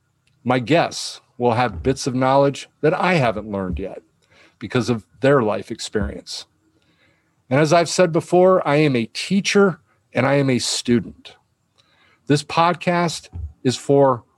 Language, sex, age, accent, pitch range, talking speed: English, male, 50-69, American, 110-145 Hz, 145 wpm